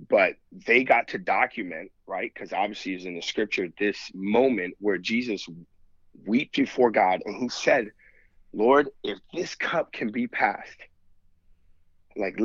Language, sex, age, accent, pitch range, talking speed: English, male, 30-49, American, 95-140 Hz, 145 wpm